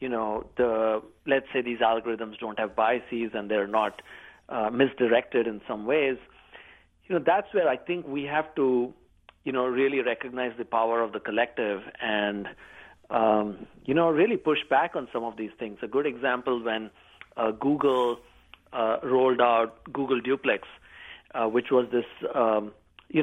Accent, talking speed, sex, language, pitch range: Indian, 170 wpm, male, English, 115-135 Hz